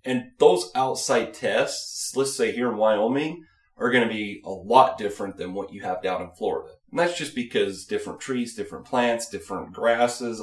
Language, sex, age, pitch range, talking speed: English, male, 30-49, 100-125 Hz, 190 wpm